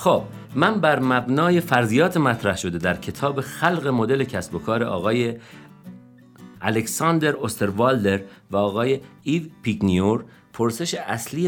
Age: 50-69